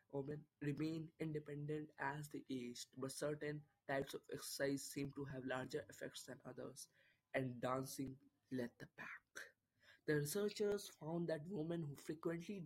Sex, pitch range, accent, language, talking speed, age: male, 140-170 Hz, Indian, English, 140 wpm, 20-39